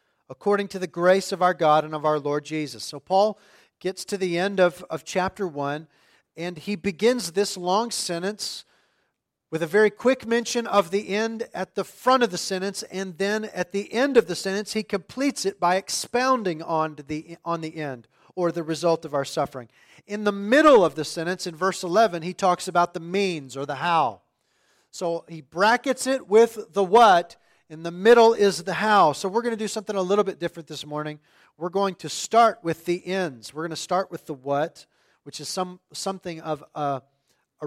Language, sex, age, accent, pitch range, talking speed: English, male, 40-59, American, 150-195 Hz, 205 wpm